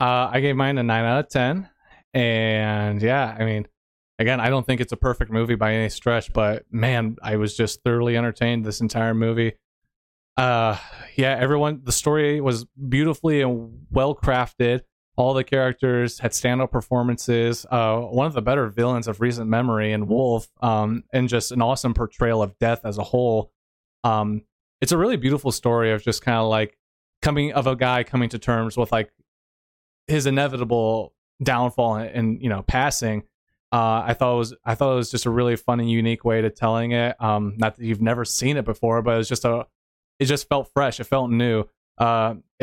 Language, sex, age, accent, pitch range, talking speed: English, male, 30-49, American, 110-125 Hz, 195 wpm